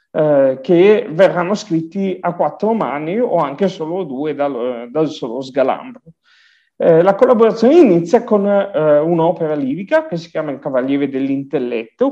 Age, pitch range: 40-59, 150-195 Hz